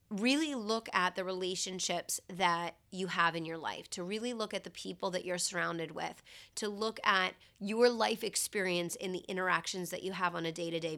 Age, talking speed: 30-49, 195 wpm